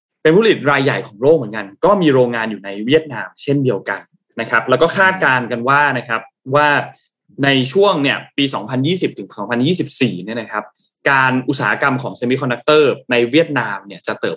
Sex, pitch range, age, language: male, 115-160 Hz, 20-39, Thai